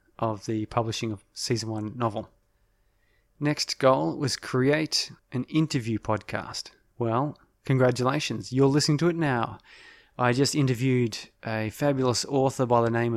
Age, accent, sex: 20-39, Australian, male